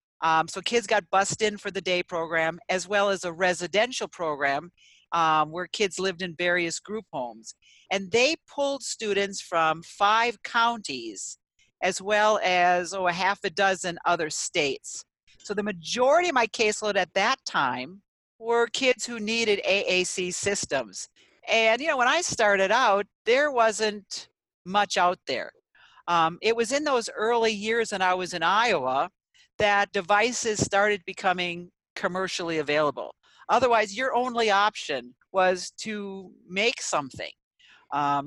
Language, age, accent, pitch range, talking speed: English, 50-69, American, 175-220 Hz, 145 wpm